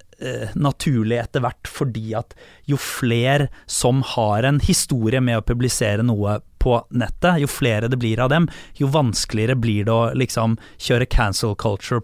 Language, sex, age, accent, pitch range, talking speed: English, male, 20-39, Swedish, 115-150 Hz, 160 wpm